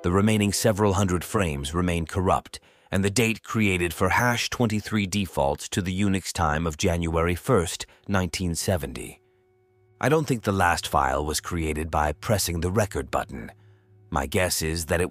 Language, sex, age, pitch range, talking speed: English, male, 30-49, 80-100 Hz, 165 wpm